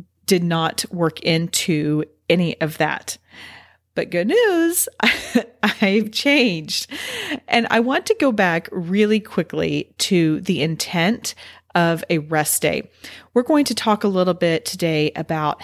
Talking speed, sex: 140 wpm, female